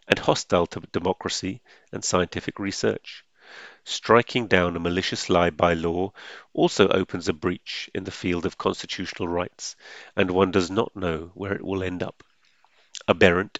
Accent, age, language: British, 40-59, English